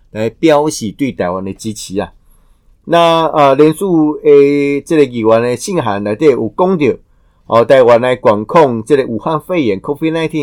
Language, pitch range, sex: Chinese, 110-155 Hz, male